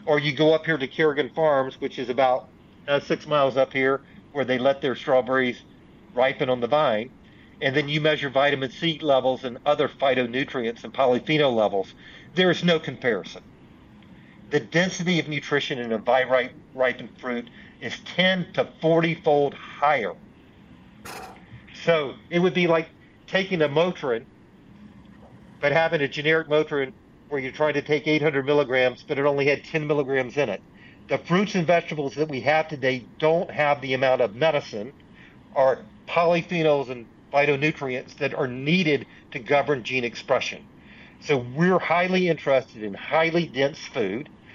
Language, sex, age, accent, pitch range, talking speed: English, male, 50-69, American, 130-160 Hz, 155 wpm